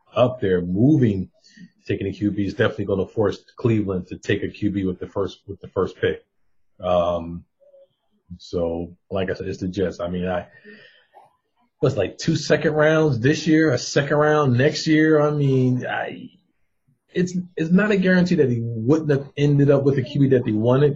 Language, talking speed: English, 190 wpm